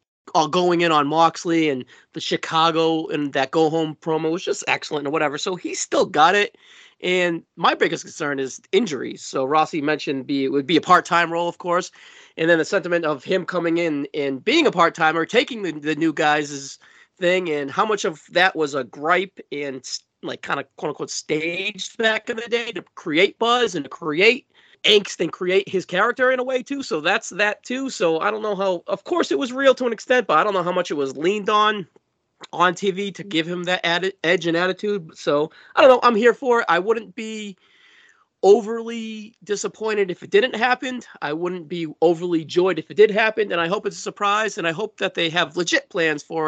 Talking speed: 220 wpm